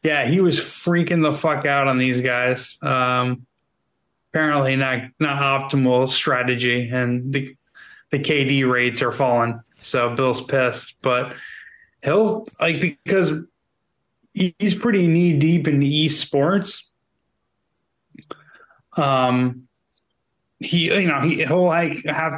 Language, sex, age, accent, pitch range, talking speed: English, male, 20-39, American, 120-150 Hz, 115 wpm